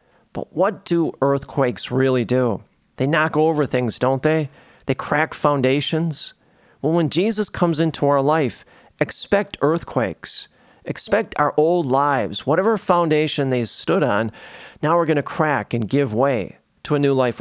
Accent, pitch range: American, 130-160 Hz